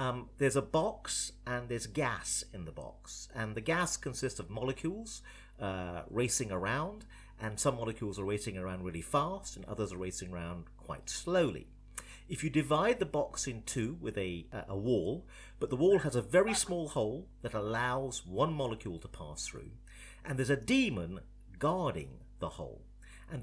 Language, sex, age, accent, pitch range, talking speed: English, male, 50-69, British, 95-135 Hz, 175 wpm